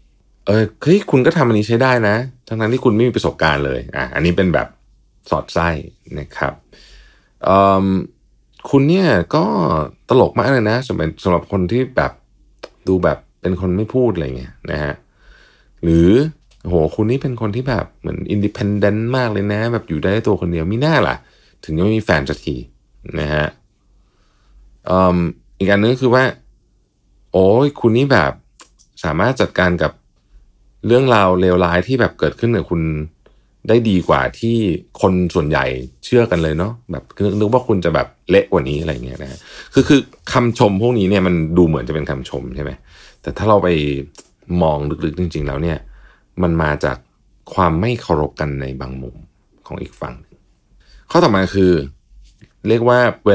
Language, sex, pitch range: Thai, male, 80-115 Hz